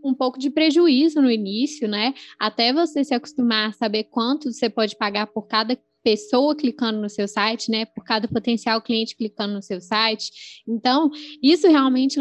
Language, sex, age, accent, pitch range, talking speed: English, female, 10-29, Brazilian, 225-285 Hz, 175 wpm